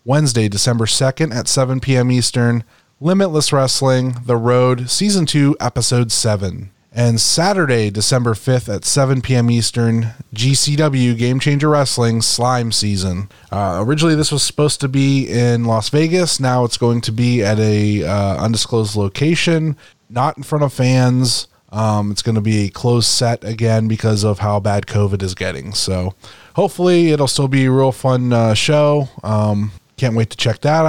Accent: American